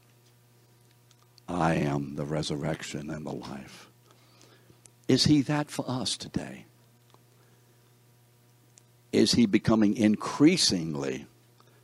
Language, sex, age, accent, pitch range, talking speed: English, male, 60-79, American, 90-120 Hz, 85 wpm